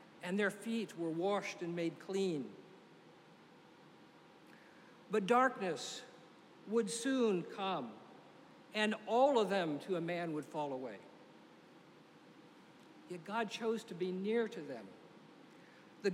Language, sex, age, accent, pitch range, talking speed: English, male, 60-79, American, 175-215 Hz, 120 wpm